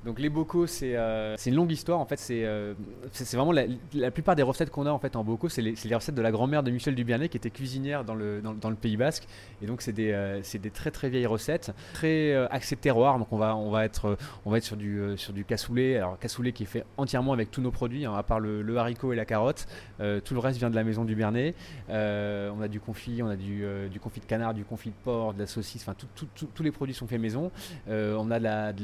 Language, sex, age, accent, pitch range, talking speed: French, male, 20-39, French, 105-130 Hz, 285 wpm